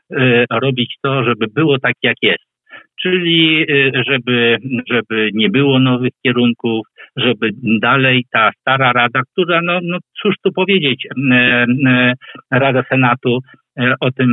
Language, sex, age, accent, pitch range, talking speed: Polish, male, 50-69, native, 115-135 Hz, 120 wpm